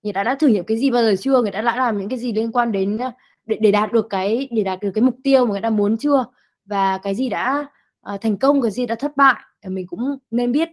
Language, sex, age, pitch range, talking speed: Vietnamese, female, 20-39, 195-245 Hz, 300 wpm